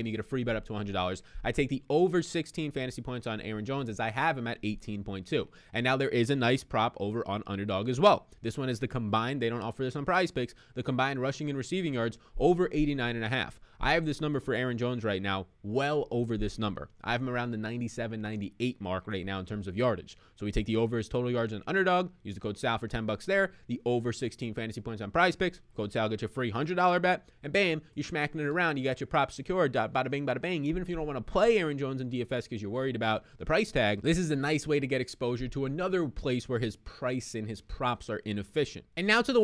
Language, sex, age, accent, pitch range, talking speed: English, male, 20-39, American, 115-155 Hz, 270 wpm